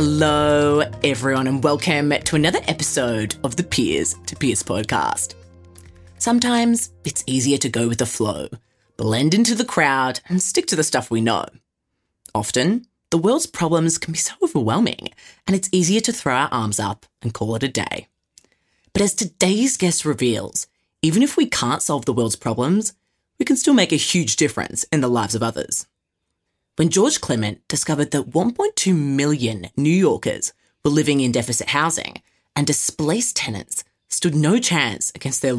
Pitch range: 115-170 Hz